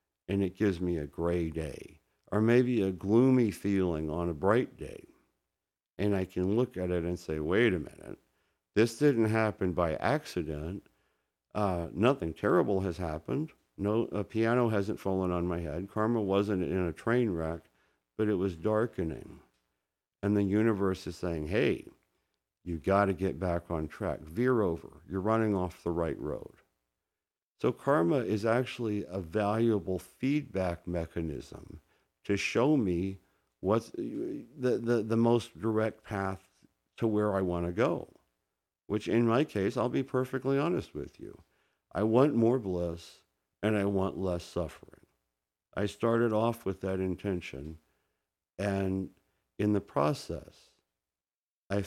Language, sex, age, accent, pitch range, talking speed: English, male, 60-79, American, 85-105 Hz, 150 wpm